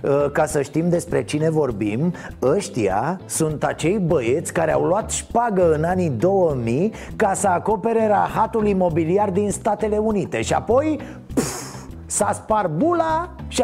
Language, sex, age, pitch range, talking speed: Romanian, male, 30-49, 150-240 Hz, 140 wpm